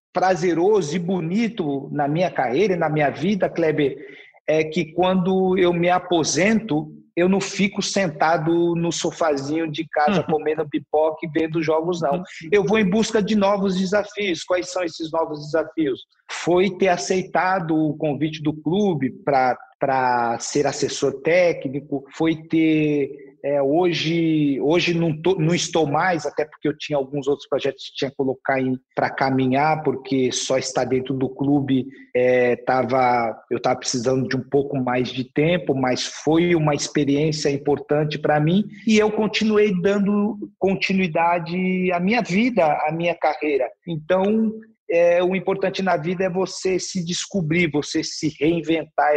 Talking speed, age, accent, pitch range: 150 wpm, 50-69, Brazilian, 145-185 Hz